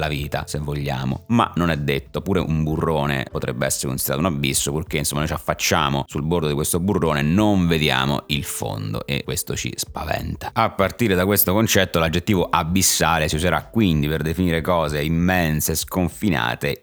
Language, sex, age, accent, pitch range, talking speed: Italian, male, 30-49, native, 75-95 Hz, 175 wpm